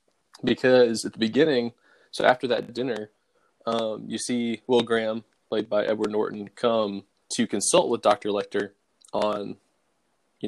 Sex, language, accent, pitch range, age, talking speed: male, English, American, 100-115 Hz, 20-39, 145 wpm